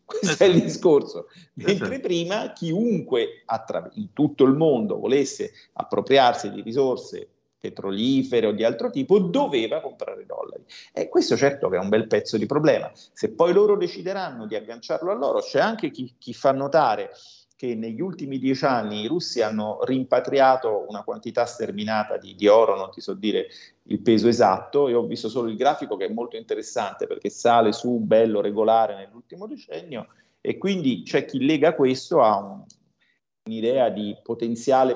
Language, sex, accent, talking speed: Italian, male, native, 170 wpm